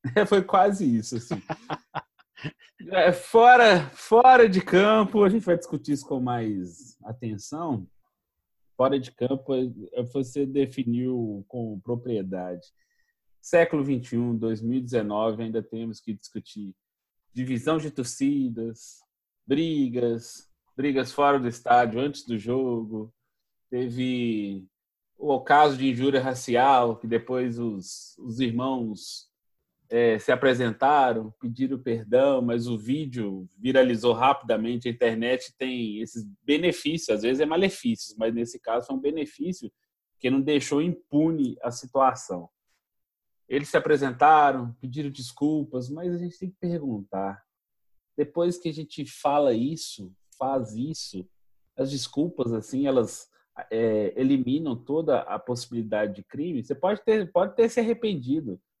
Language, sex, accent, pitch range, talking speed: Portuguese, male, Brazilian, 115-150 Hz, 125 wpm